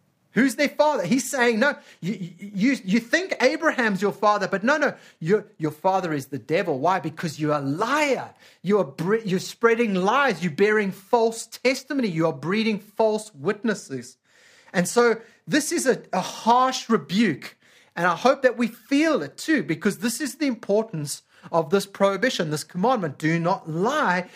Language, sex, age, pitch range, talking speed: English, male, 30-49, 175-250 Hz, 170 wpm